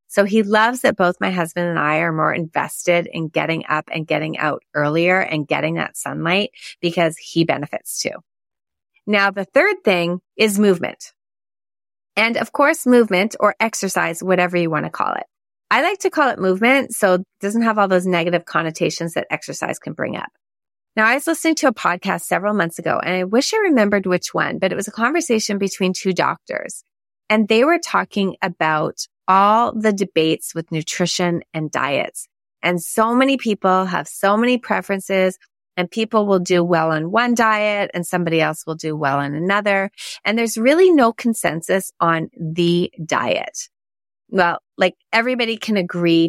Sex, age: female, 30-49